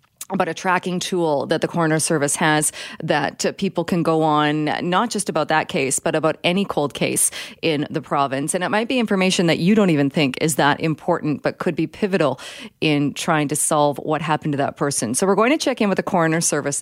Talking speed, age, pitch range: 225 wpm, 30-49, 145-180 Hz